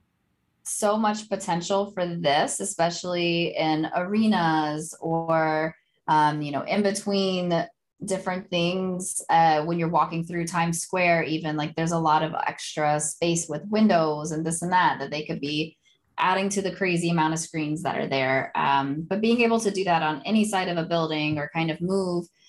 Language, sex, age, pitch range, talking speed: English, female, 20-39, 150-180 Hz, 180 wpm